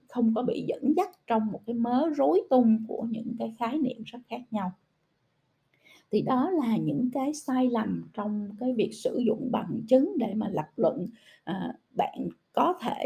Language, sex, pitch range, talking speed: Vietnamese, female, 190-255 Hz, 185 wpm